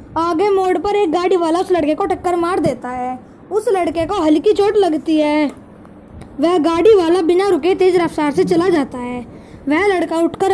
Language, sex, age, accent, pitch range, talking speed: Hindi, female, 20-39, native, 320-385 Hz, 195 wpm